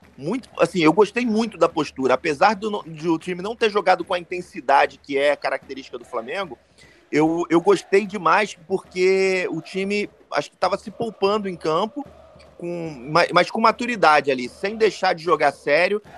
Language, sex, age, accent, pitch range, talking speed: Portuguese, male, 30-49, Brazilian, 140-200 Hz, 165 wpm